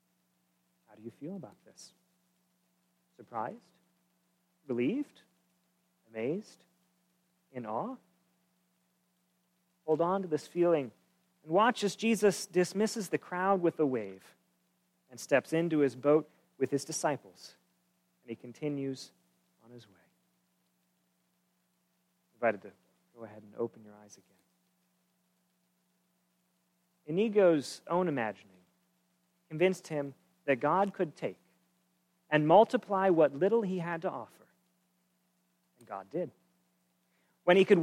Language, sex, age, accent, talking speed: English, male, 40-59, American, 115 wpm